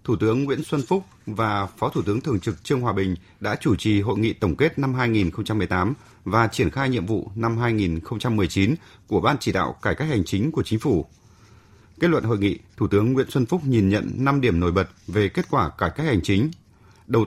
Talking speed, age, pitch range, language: 220 wpm, 30-49, 100-130 Hz, Vietnamese